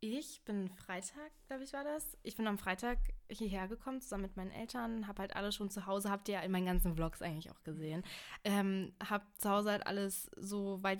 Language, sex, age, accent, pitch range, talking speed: German, female, 20-39, German, 190-215 Hz, 225 wpm